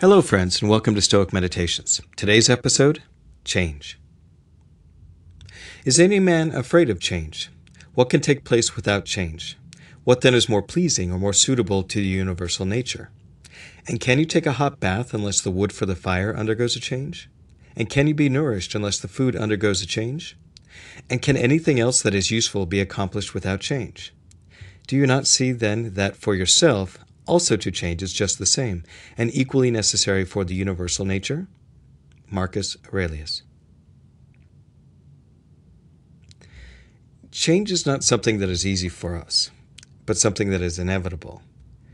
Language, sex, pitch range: English, male, 90-125 Hz